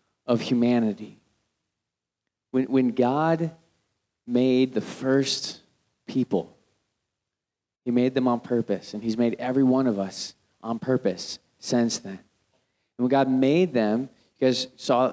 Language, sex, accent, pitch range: English, male, American, 115-140 Hz